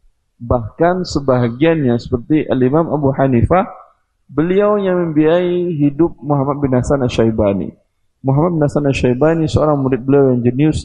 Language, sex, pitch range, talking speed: Indonesian, male, 120-145 Hz, 125 wpm